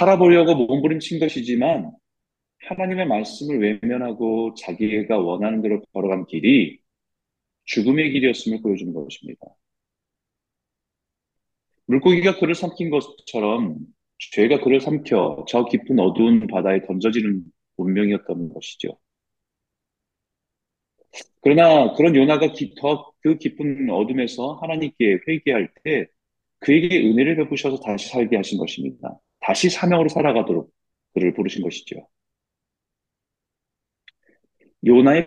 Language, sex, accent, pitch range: Korean, male, native, 100-155 Hz